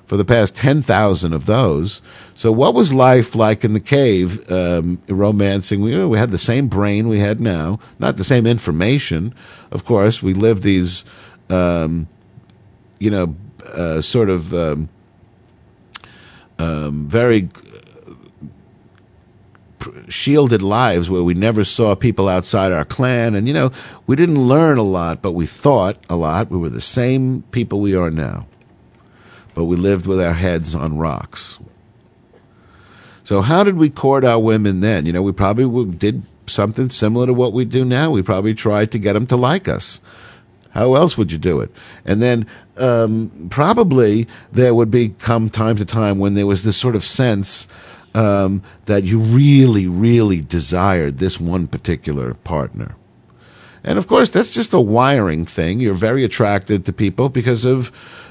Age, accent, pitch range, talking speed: 50-69, American, 95-120 Hz, 165 wpm